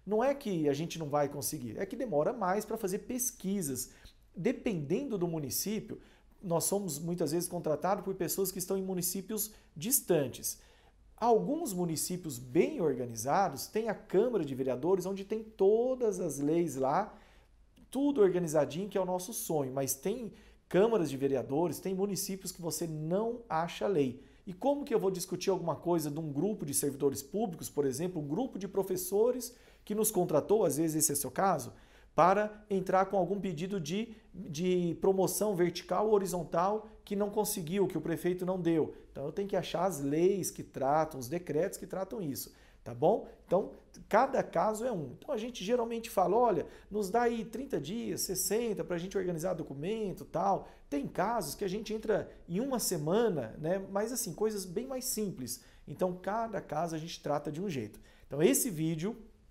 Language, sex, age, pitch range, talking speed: Portuguese, male, 40-59, 155-210 Hz, 180 wpm